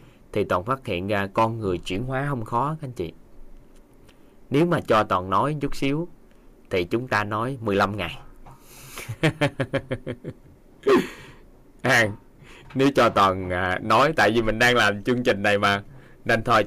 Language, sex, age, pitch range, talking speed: Vietnamese, male, 20-39, 100-130 Hz, 155 wpm